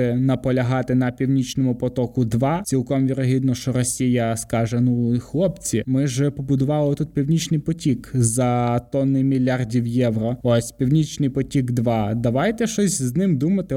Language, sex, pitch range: Ukrainian, male, 120-155 Hz